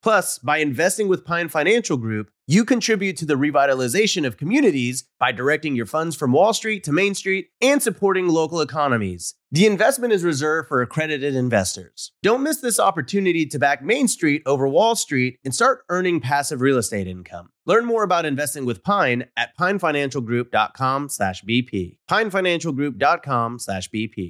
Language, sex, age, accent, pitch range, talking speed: English, male, 30-49, American, 125-195 Hz, 155 wpm